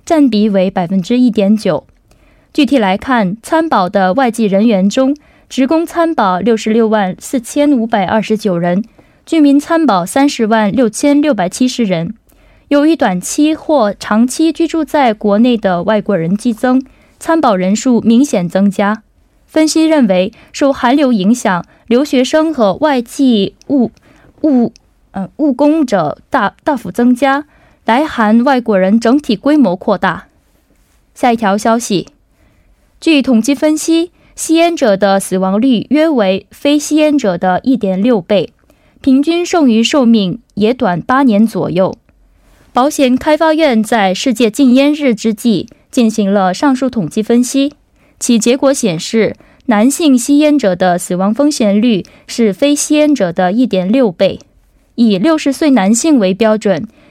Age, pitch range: 10-29, 200-285 Hz